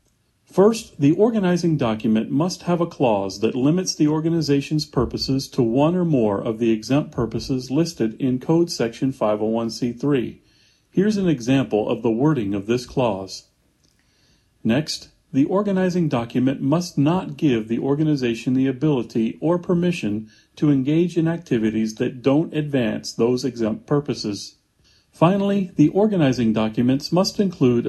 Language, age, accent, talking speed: English, 40-59, American, 140 wpm